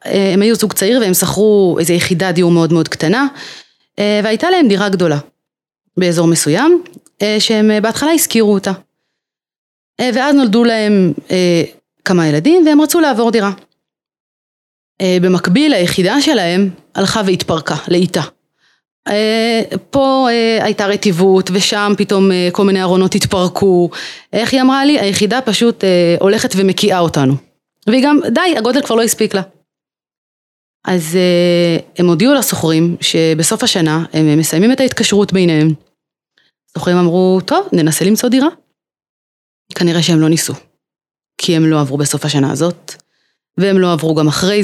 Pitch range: 170-220 Hz